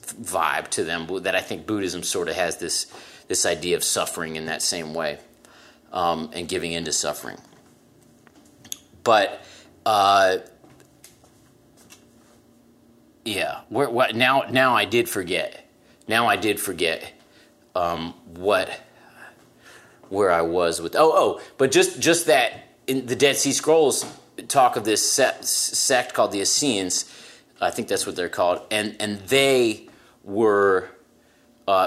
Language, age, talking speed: English, 30-49, 140 wpm